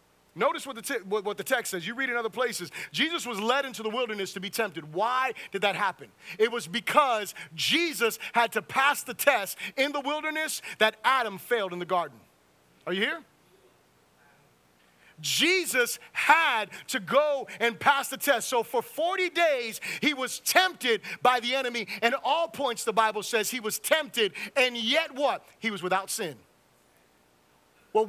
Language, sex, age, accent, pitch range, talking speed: English, male, 30-49, American, 190-265 Hz, 175 wpm